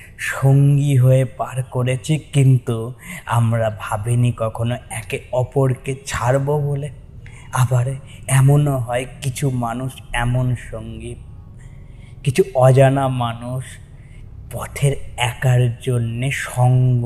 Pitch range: 115-130 Hz